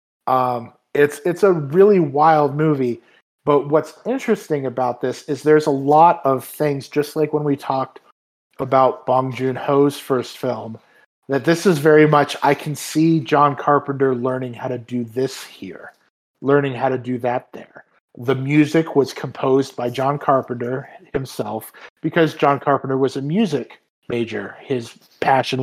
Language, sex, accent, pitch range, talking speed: English, male, American, 125-150 Hz, 155 wpm